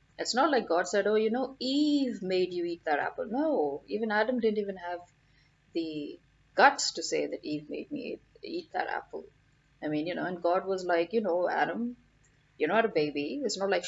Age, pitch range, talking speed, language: 30-49, 150-230 Hz, 210 wpm, English